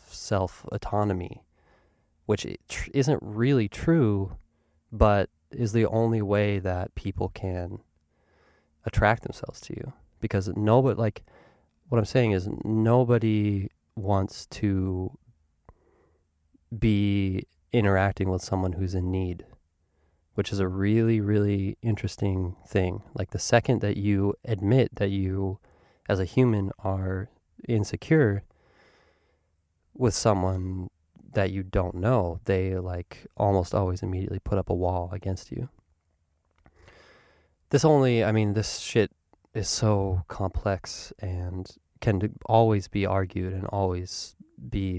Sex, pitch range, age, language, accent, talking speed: male, 90-110 Hz, 20-39, English, American, 120 wpm